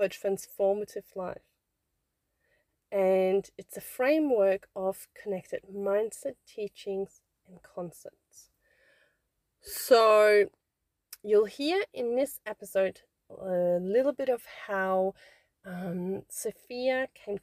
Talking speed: 90 wpm